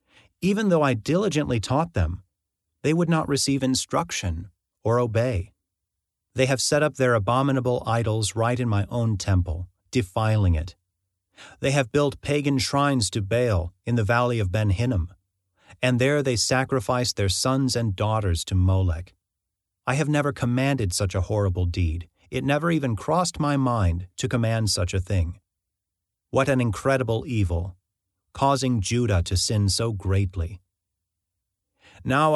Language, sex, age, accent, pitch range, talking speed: English, male, 40-59, American, 95-135 Hz, 145 wpm